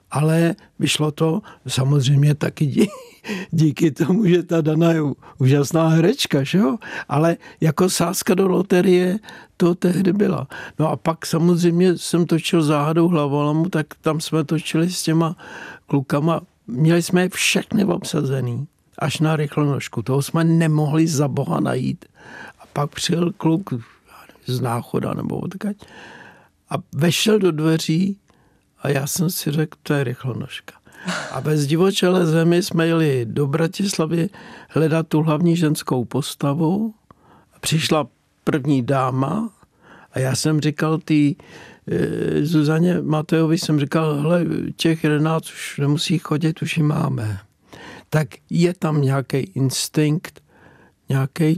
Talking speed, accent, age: 130 wpm, native, 60-79